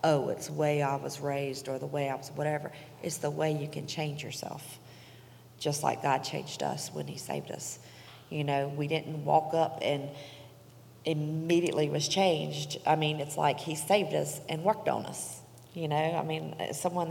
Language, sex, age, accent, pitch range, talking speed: English, female, 40-59, American, 145-165 Hz, 195 wpm